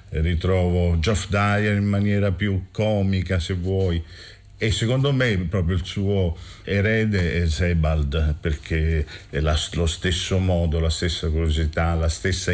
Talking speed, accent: 130 wpm, native